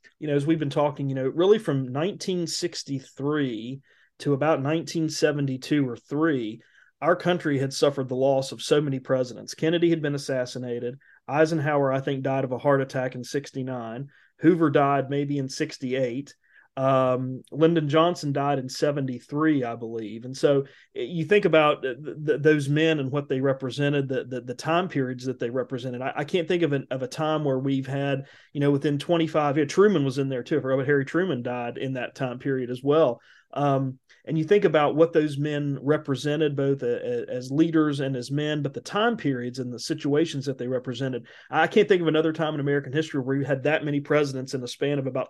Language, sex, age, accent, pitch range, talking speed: English, male, 30-49, American, 130-155 Hz, 205 wpm